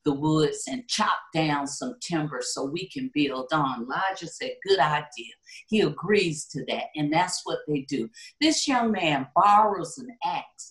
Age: 50-69